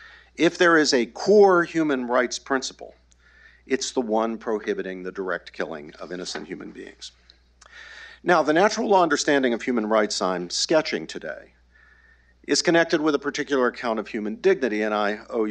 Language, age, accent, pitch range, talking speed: English, 50-69, American, 100-145 Hz, 165 wpm